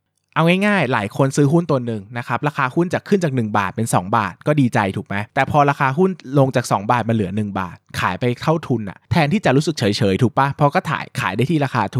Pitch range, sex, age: 110-145 Hz, male, 20-39